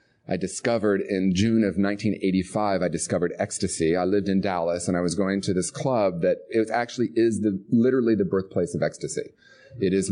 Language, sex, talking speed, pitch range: English, male, 185 wpm, 95-115 Hz